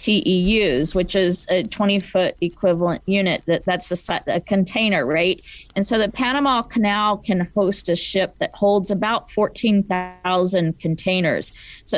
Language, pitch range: English, 175-210 Hz